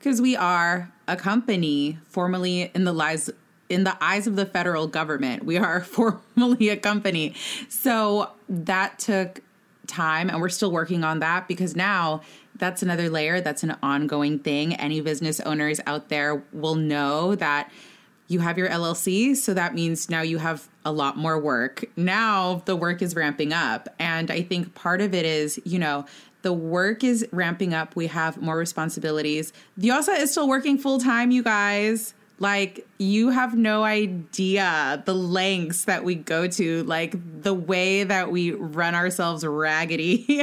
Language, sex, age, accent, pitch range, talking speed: English, female, 20-39, American, 160-205 Hz, 165 wpm